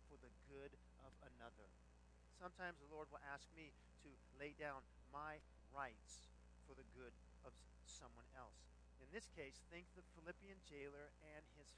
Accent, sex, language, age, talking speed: American, male, English, 50-69, 160 wpm